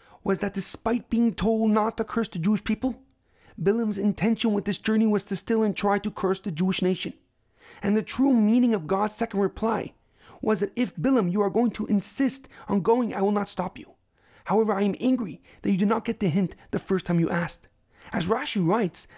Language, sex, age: English, male, 30-49